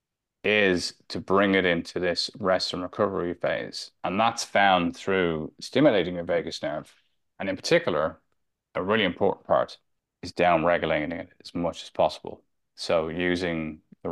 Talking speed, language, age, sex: 150 wpm, English, 30-49, male